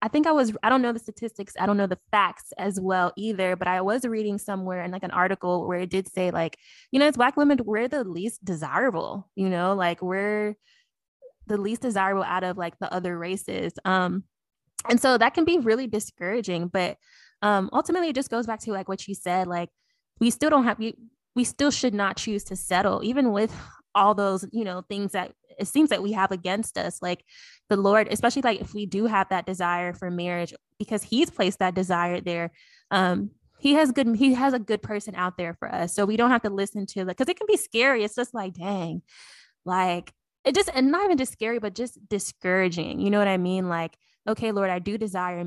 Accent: American